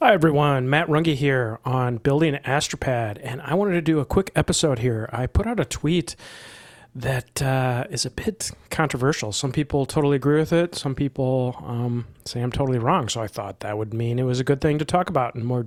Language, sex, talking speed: English, male, 220 wpm